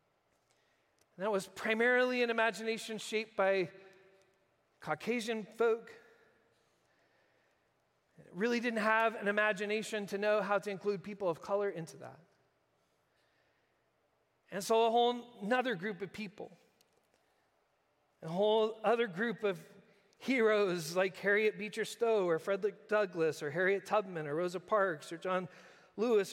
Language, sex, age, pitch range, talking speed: English, male, 40-59, 195-240 Hz, 125 wpm